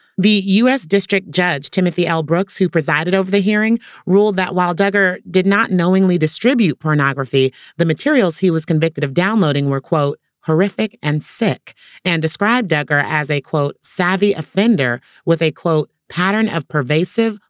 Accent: American